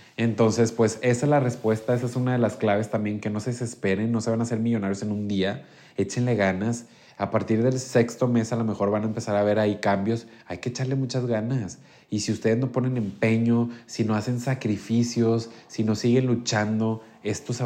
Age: 20-39